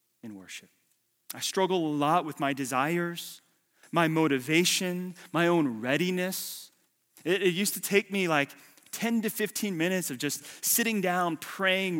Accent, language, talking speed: American, English, 150 wpm